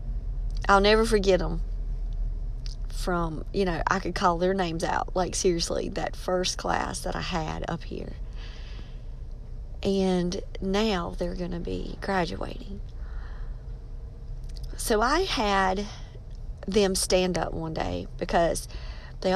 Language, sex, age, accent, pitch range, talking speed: English, female, 40-59, American, 125-185 Hz, 125 wpm